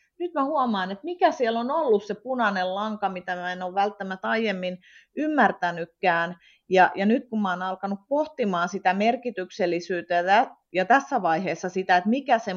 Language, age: Finnish, 30-49